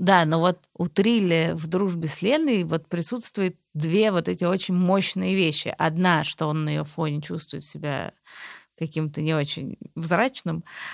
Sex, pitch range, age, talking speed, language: female, 155-190 Hz, 20-39, 160 wpm, Russian